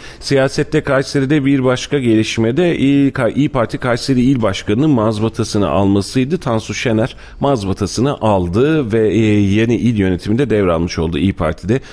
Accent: native